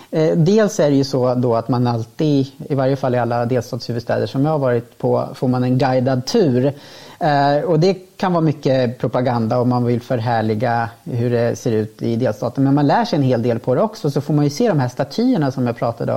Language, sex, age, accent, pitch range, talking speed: Swedish, female, 30-49, Norwegian, 125-155 Hz, 230 wpm